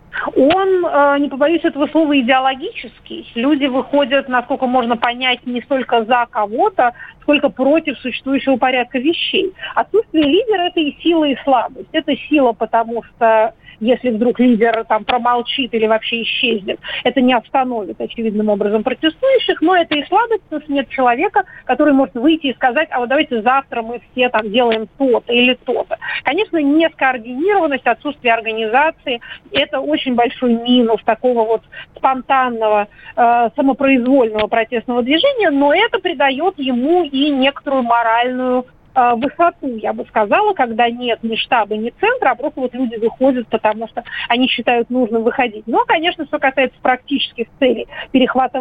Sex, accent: female, native